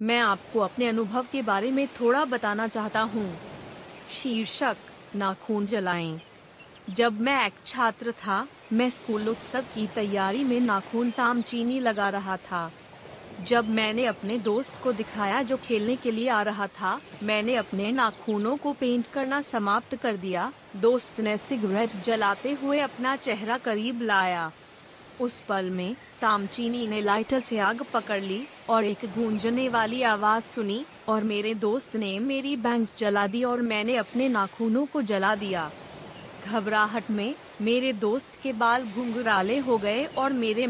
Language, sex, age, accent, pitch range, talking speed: Hindi, female, 30-49, native, 210-245 Hz, 150 wpm